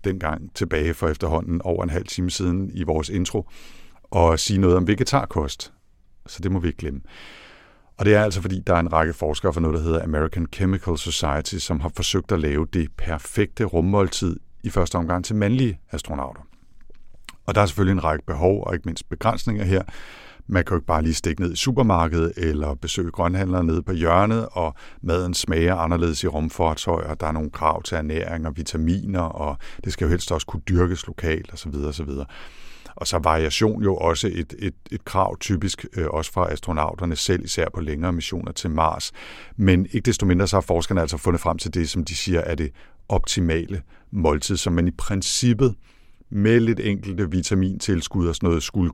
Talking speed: 200 wpm